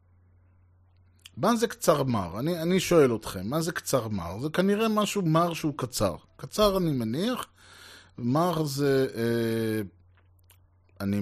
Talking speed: 135 wpm